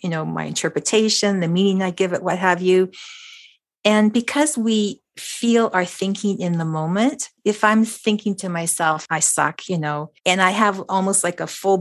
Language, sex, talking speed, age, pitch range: English, female, 190 wpm, 50-69, 165-200 Hz